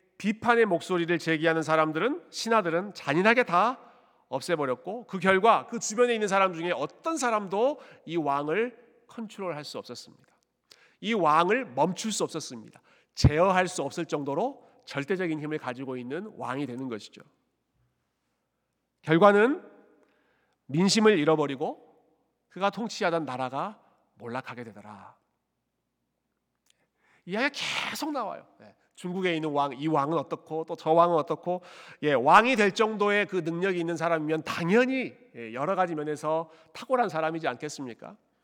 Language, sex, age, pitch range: Korean, male, 40-59, 150-215 Hz